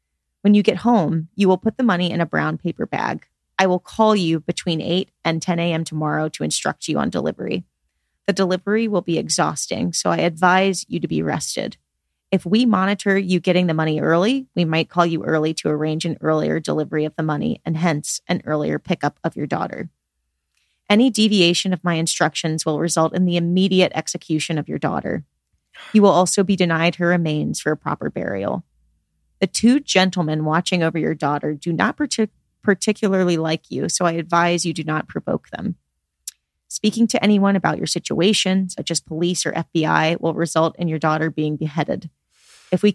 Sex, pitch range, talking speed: female, 155-190 Hz, 190 wpm